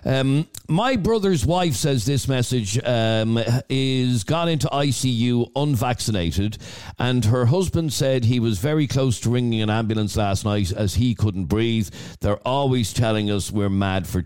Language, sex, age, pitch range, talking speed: English, male, 50-69, 105-135 Hz, 160 wpm